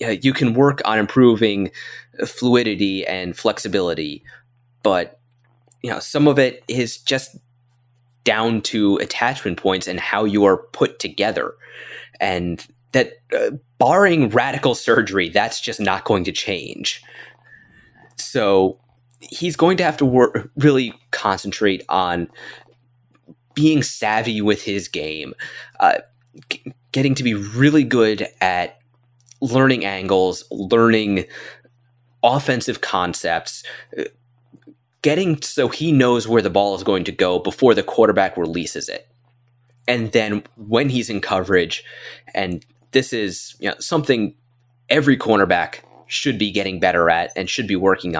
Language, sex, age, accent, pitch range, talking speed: English, male, 20-39, American, 100-130 Hz, 130 wpm